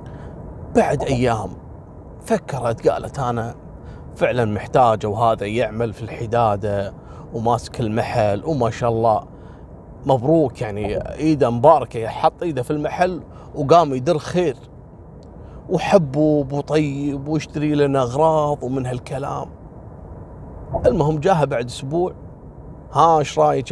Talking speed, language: 105 wpm, Arabic